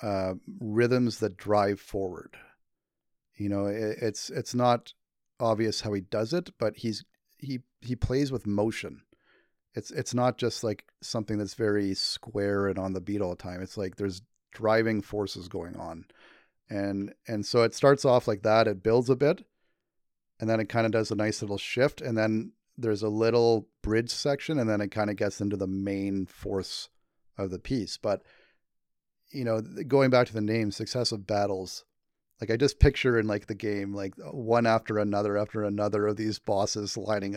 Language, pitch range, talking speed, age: English, 100-115 Hz, 185 wpm, 30-49